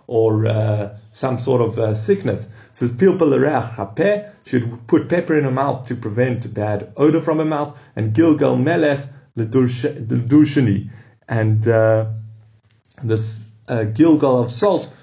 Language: English